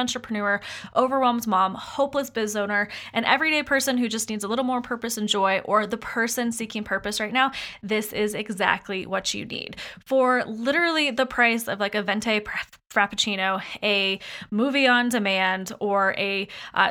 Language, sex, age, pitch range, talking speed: English, female, 20-39, 200-250 Hz, 165 wpm